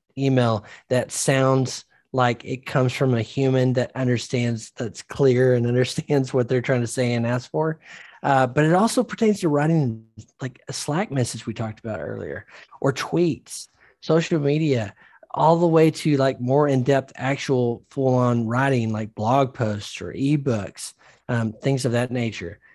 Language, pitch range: English, 115-135 Hz